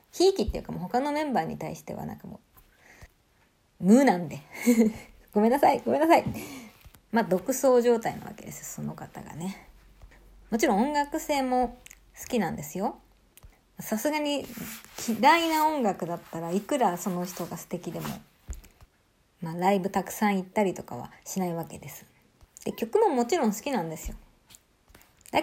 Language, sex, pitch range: Japanese, female, 175-245 Hz